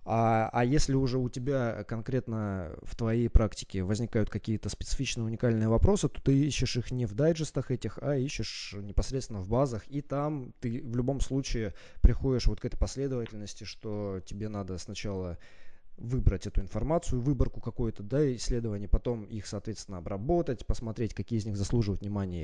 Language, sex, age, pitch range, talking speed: Russian, male, 20-39, 100-130 Hz, 160 wpm